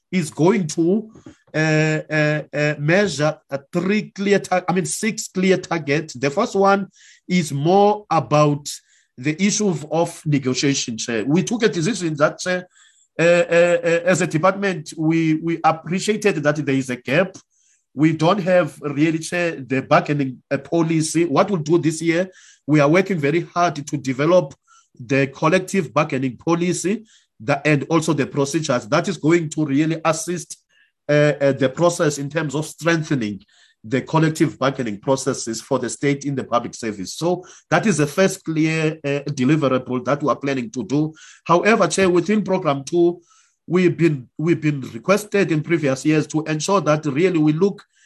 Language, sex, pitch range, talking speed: English, male, 145-180 Hz, 165 wpm